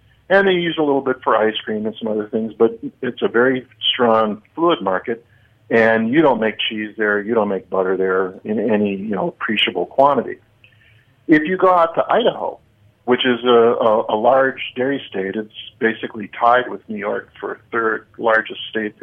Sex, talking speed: male, 190 wpm